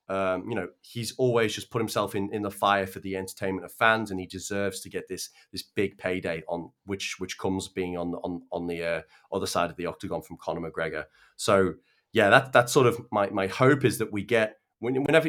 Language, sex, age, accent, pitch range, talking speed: English, male, 30-49, British, 95-120 Hz, 230 wpm